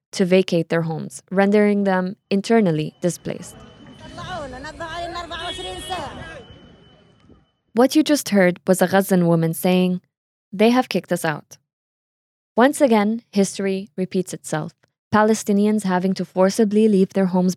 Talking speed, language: 115 wpm, English